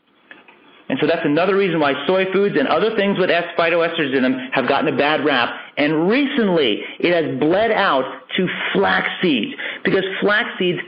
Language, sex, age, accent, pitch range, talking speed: English, male, 40-59, American, 170-220 Hz, 175 wpm